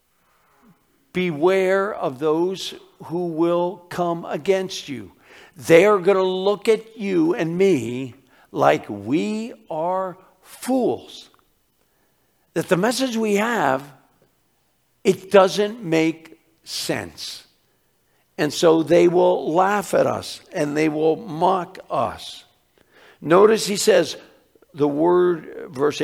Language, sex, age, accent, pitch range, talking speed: English, male, 60-79, American, 150-190 Hz, 110 wpm